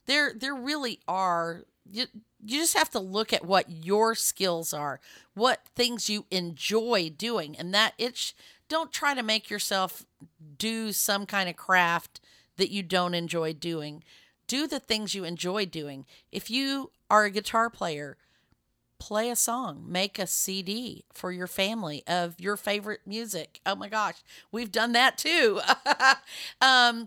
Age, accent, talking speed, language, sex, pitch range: 50-69, American, 155 wpm, English, female, 175-225 Hz